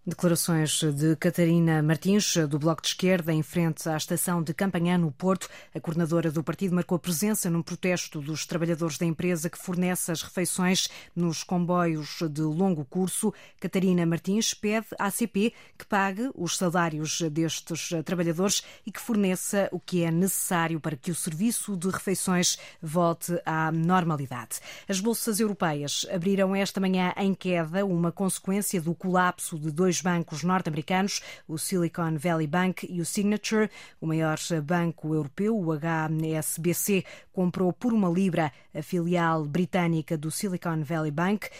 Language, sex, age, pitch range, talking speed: Portuguese, female, 20-39, 165-185 Hz, 150 wpm